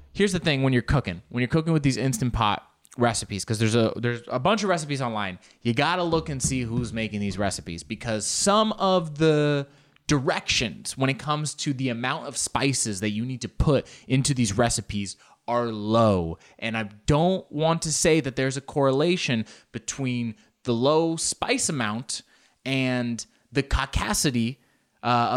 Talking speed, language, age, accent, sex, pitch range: 175 wpm, English, 20-39, American, male, 115-155 Hz